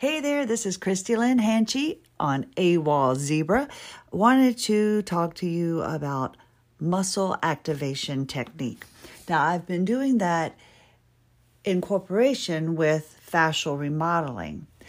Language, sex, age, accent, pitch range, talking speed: English, female, 50-69, American, 135-185 Hz, 120 wpm